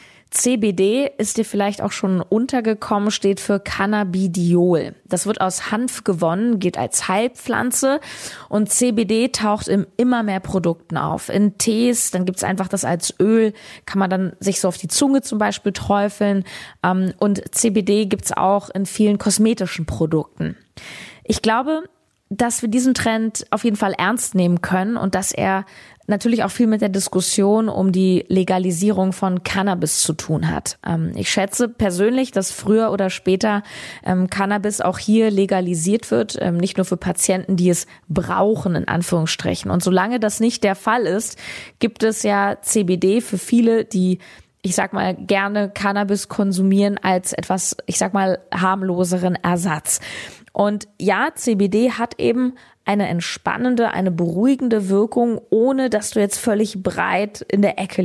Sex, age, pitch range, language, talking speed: female, 20-39, 185-220 Hz, German, 155 wpm